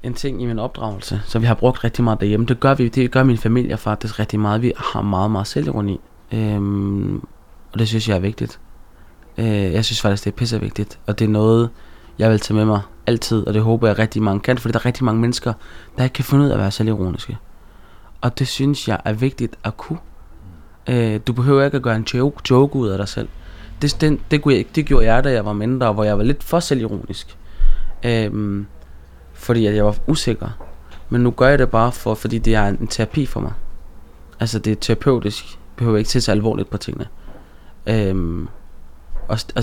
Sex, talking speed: male, 215 wpm